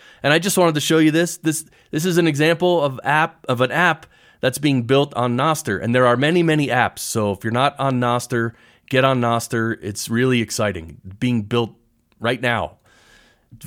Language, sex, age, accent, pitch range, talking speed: English, male, 30-49, American, 115-160 Hz, 200 wpm